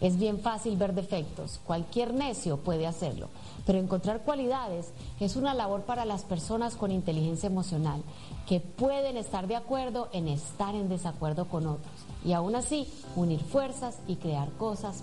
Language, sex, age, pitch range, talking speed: Spanish, female, 30-49, 180-245 Hz, 160 wpm